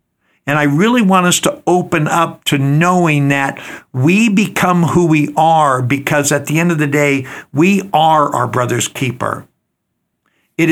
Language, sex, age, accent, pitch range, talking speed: English, male, 60-79, American, 135-170 Hz, 160 wpm